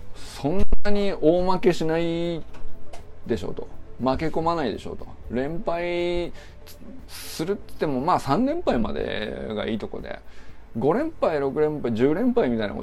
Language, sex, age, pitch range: Japanese, male, 20-39, 95-160 Hz